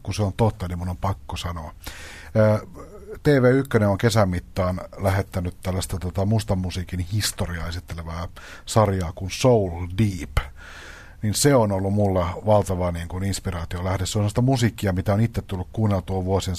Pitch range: 85-105 Hz